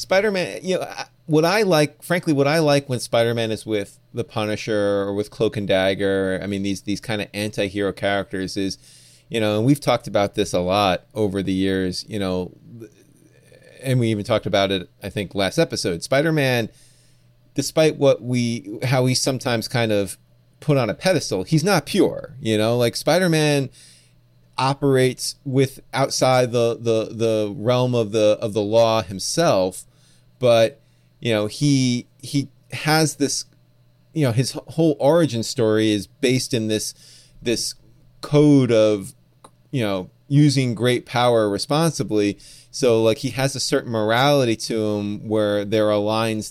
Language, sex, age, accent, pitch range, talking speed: English, male, 30-49, American, 105-140 Hz, 165 wpm